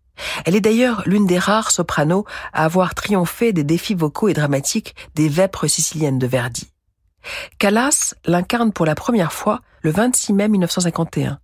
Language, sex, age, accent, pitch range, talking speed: French, female, 50-69, French, 155-205 Hz, 155 wpm